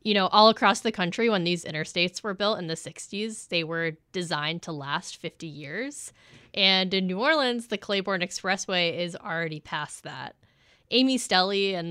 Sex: female